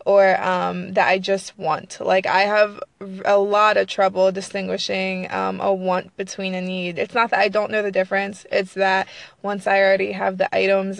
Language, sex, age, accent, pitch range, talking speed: English, female, 20-39, American, 190-205 Hz, 195 wpm